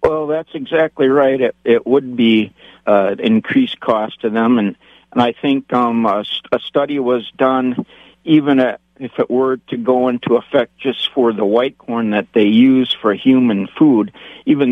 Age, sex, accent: 50-69, male, American